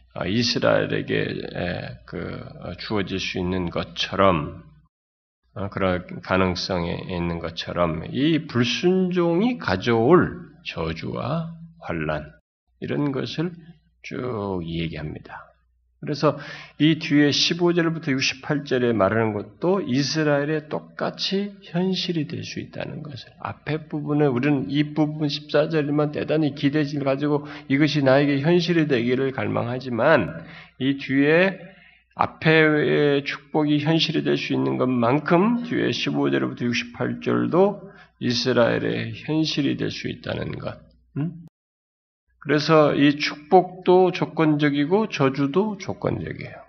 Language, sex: Korean, male